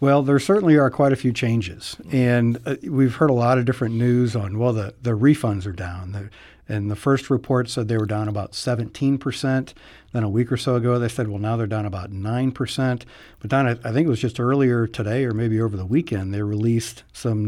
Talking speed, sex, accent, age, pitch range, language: 225 wpm, male, American, 60-79, 105-135 Hz, English